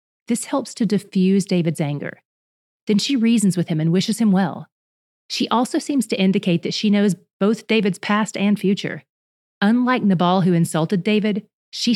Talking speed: 170 wpm